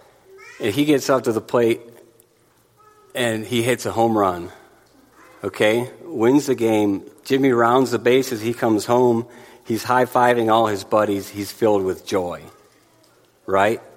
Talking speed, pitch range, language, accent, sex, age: 145 wpm, 110-150 Hz, English, American, male, 50-69